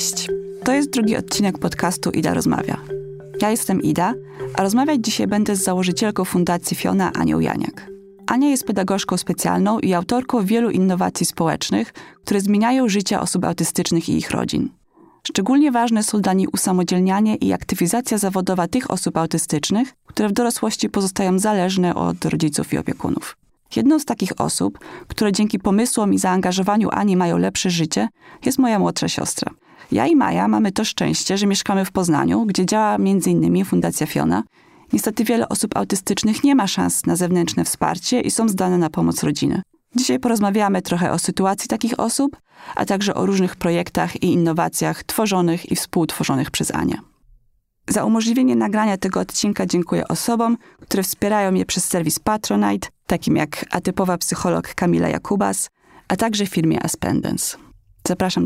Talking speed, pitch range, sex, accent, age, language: 150 wpm, 175-225 Hz, female, native, 20-39, Polish